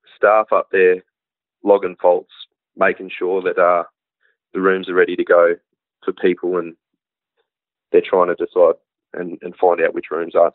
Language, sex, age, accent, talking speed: English, male, 20-39, Australian, 165 wpm